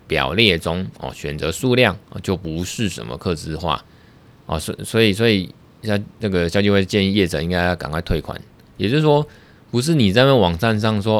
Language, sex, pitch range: Chinese, male, 85-110 Hz